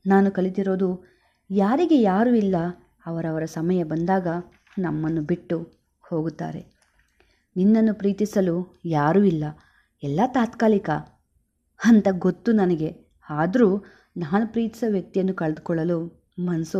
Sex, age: female, 30-49